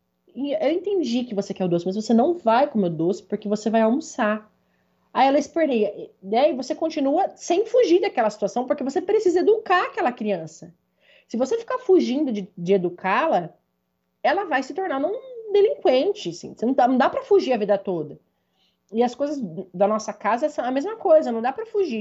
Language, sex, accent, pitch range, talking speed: Portuguese, female, Brazilian, 215-300 Hz, 200 wpm